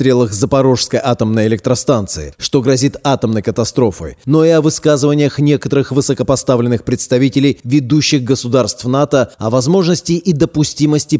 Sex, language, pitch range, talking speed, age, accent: male, Russian, 120-145 Hz, 115 wpm, 30-49, native